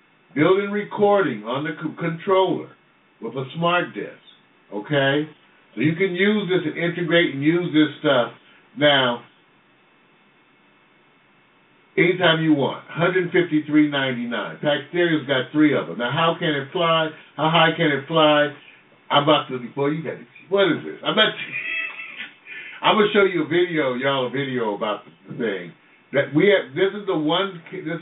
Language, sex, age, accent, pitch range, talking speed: English, male, 60-79, American, 135-170 Hz, 165 wpm